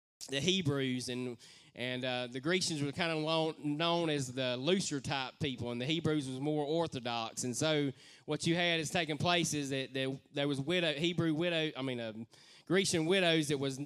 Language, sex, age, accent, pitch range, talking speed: English, male, 20-39, American, 135-165 Hz, 195 wpm